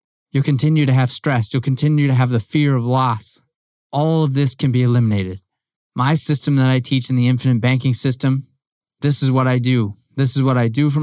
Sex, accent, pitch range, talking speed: male, American, 125-145 Hz, 220 wpm